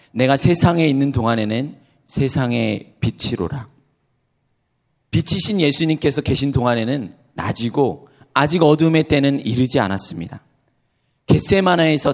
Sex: male